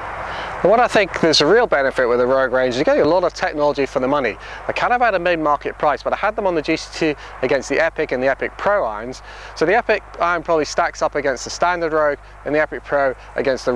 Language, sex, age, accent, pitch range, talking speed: English, male, 30-49, British, 135-175 Hz, 265 wpm